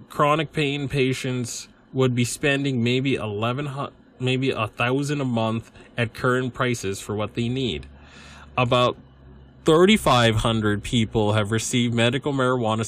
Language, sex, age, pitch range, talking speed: English, male, 20-39, 110-130 Hz, 115 wpm